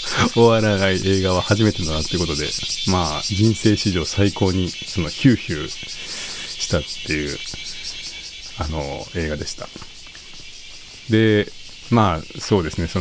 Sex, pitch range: male, 85-110 Hz